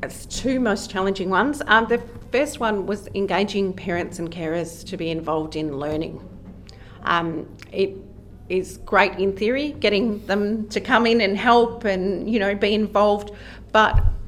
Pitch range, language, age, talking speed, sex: 165-205 Hz, English, 40-59, 155 wpm, female